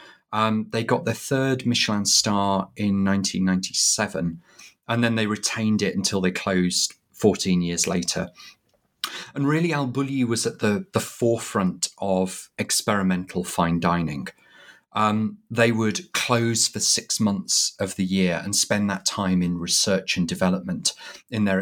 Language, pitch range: English, 95-115 Hz